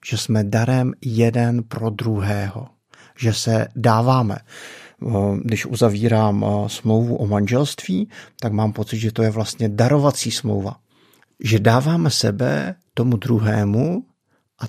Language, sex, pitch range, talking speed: Czech, male, 110-130 Hz, 120 wpm